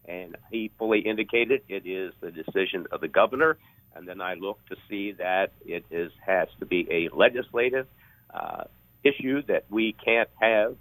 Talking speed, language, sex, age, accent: 170 wpm, English, male, 50-69, American